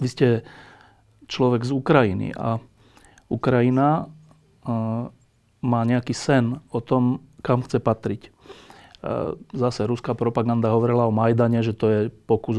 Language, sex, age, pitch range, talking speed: Slovak, male, 40-59, 110-130 Hz, 130 wpm